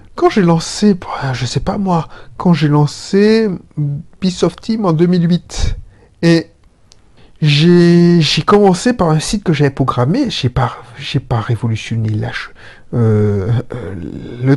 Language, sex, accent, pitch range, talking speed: French, male, French, 135-180 Hz, 140 wpm